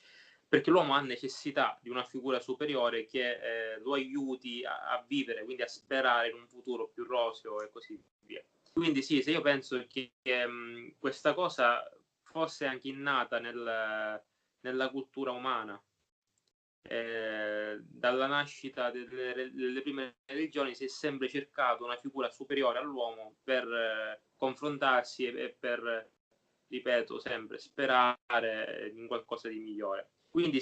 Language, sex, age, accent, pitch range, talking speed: Italian, male, 20-39, native, 120-140 Hz, 135 wpm